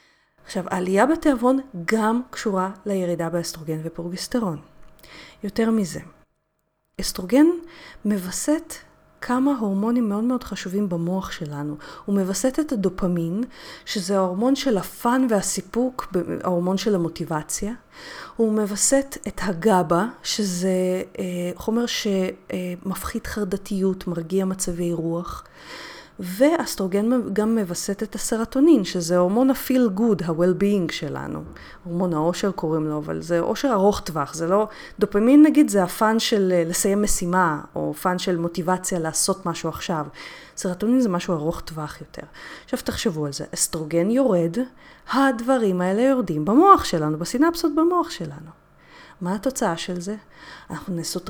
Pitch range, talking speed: 175-230 Hz, 120 wpm